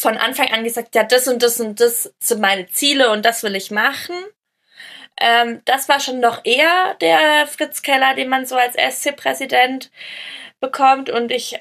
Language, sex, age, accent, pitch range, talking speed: German, female, 20-39, German, 200-255 Hz, 180 wpm